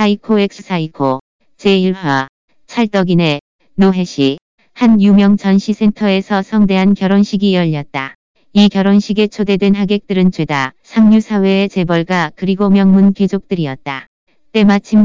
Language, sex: Korean, female